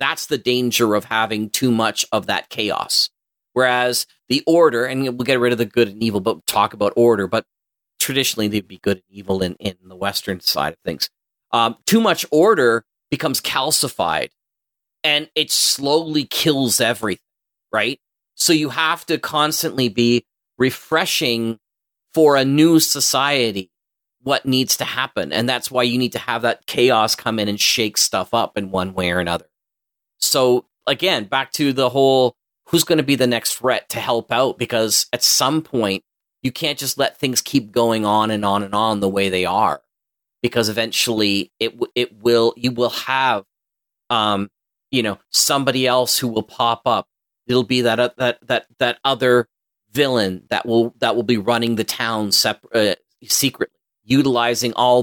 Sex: male